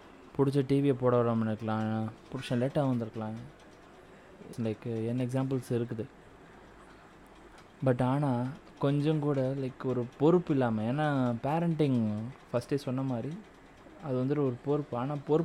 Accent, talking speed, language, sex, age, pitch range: Indian, 130 wpm, English, male, 20-39, 120-150 Hz